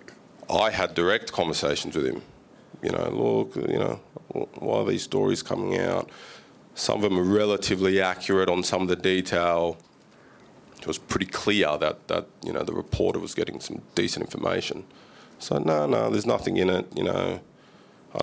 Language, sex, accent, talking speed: English, male, Australian, 175 wpm